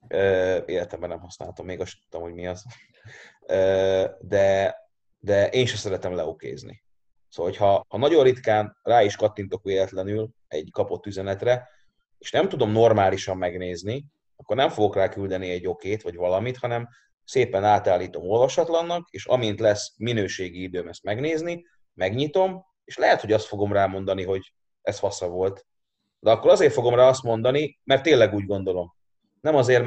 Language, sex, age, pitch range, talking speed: Hungarian, male, 30-49, 95-145 Hz, 155 wpm